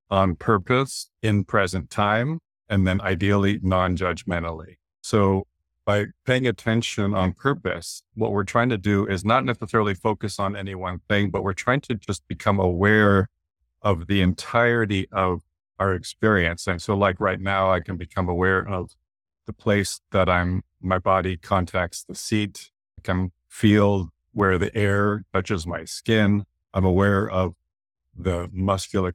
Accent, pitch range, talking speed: American, 90-105 Hz, 150 wpm